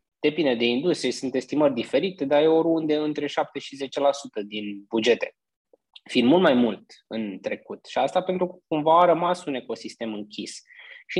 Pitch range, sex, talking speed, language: 120-155 Hz, male, 170 wpm, Romanian